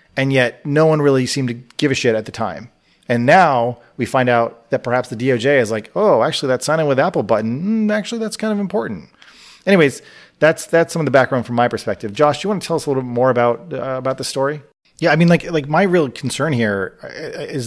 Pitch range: 115-140 Hz